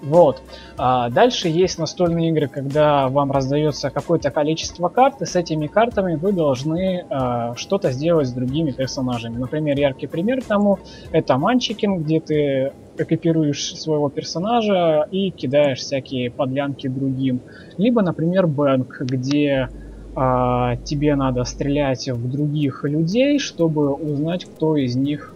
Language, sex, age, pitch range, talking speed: Russian, male, 20-39, 130-160 Hz, 135 wpm